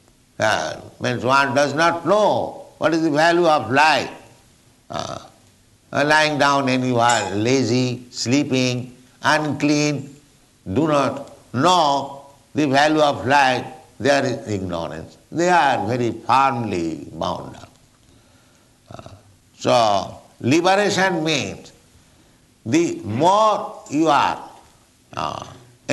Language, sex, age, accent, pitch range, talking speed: English, male, 60-79, Indian, 115-150 Hz, 105 wpm